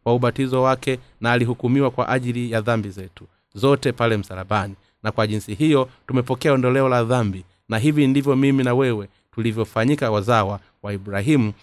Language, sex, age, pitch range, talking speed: Swahili, male, 30-49, 110-135 Hz, 155 wpm